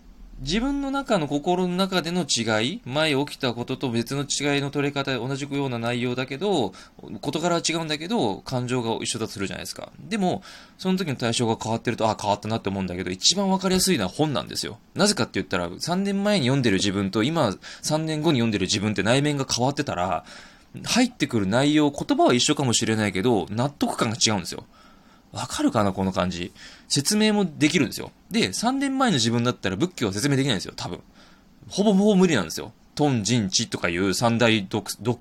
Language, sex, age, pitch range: Japanese, male, 20-39, 100-155 Hz